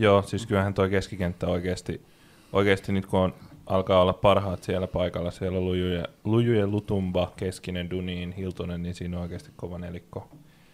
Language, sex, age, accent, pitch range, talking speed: Finnish, male, 20-39, native, 95-115 Hz, 155 wpm